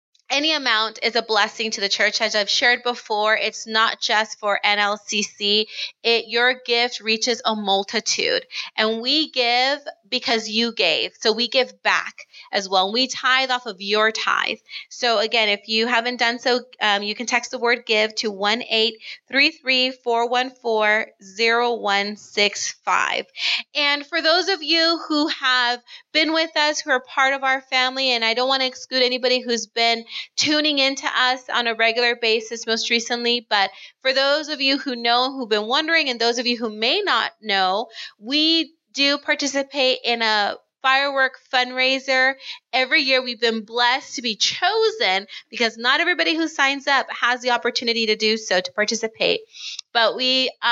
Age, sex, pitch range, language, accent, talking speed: 30-49, female, 220-270 Hz, English, American, 180 wpm